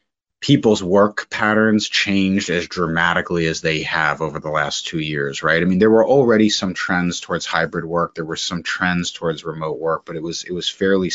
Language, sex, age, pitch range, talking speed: English, male, 30-49, 80-100 Hz, 205 wpm